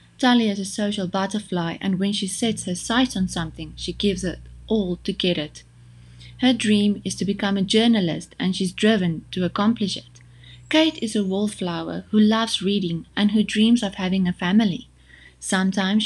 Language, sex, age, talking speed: English, female, 30-49, 180 wpm